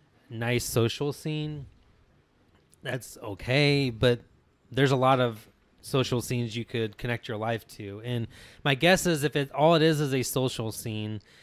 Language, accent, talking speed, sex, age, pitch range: English, American, 165 wpm, male, 20-39, 110-135 Hz